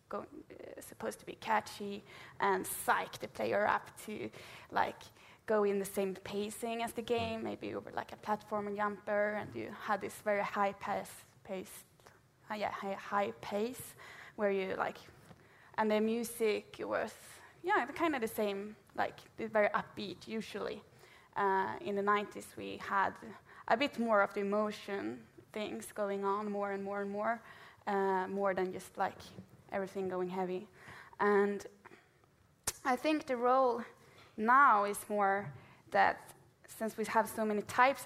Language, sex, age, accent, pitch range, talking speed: English, female, 20-39, Norwegian, 200-220 Hz, 155 wpm